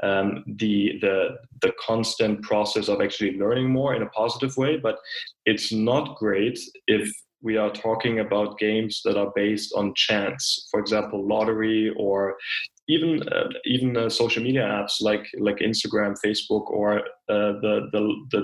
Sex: male